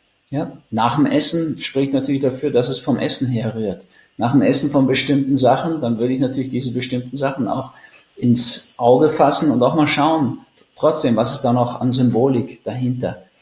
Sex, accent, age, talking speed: male, German, 50-69, 185 wpm